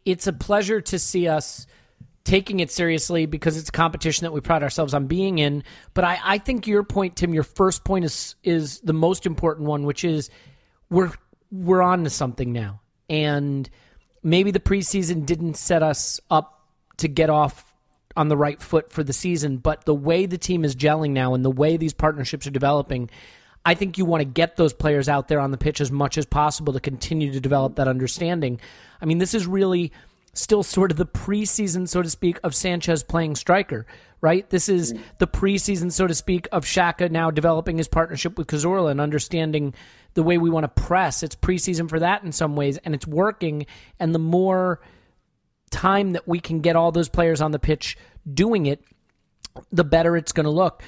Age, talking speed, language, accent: 30-49, 205 wpm, English, American